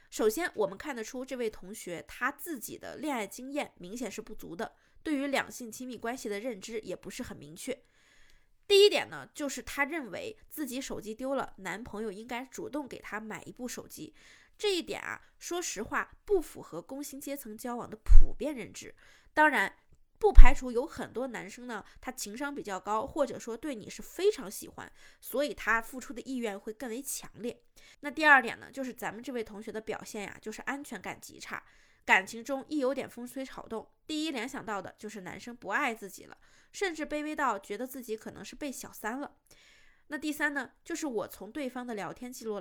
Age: 20-39